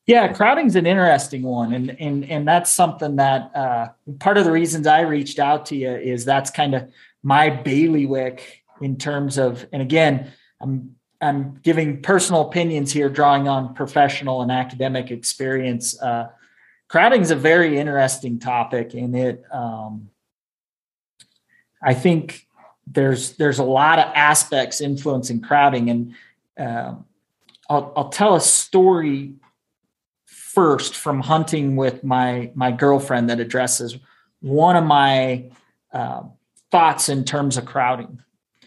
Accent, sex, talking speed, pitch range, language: American, male, 135 wpm, 125-150 Hz, English